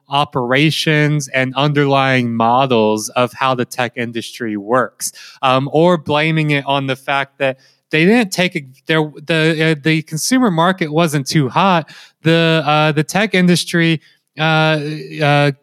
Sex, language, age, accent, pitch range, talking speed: male, English, 20-39, American, 130-160 Hz, 140 wpm